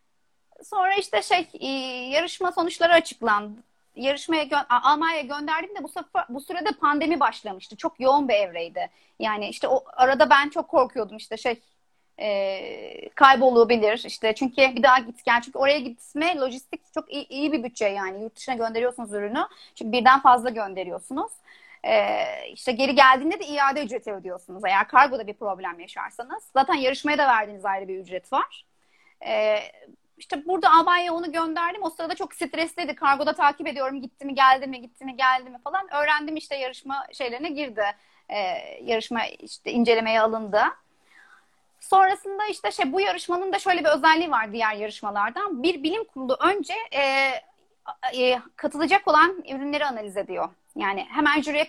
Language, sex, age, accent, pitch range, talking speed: Turkish, female, 40-59, native, 235-335 Hz, 155 wpm